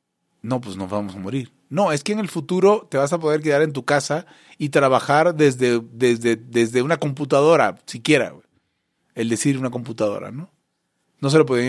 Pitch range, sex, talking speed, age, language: 115-155 Hz, male, 195 wpm, 30-49, Spanish